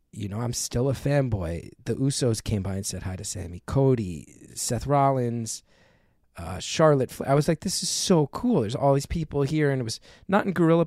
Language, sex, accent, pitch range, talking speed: English, male, American, 105-125 Hz, 215 wpm